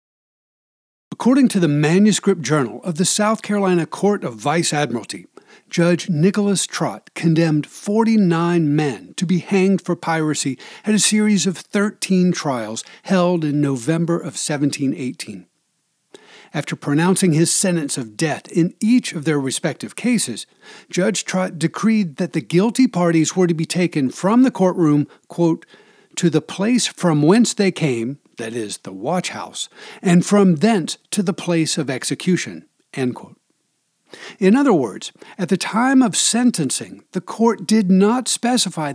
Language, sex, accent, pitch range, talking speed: English, male, American, 160-205 Hz, 145 wpm